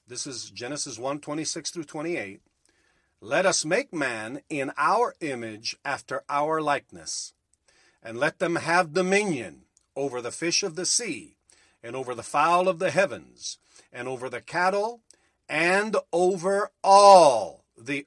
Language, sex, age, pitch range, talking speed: English, male, 50-69, 140-190 Hz, 140 wpm